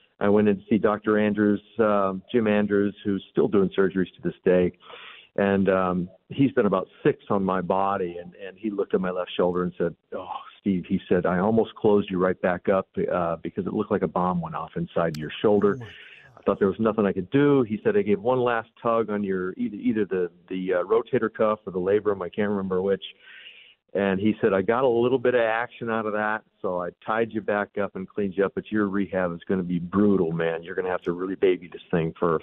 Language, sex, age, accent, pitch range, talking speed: English, male, 50-69, American, 95-115 Hz, 245 wpm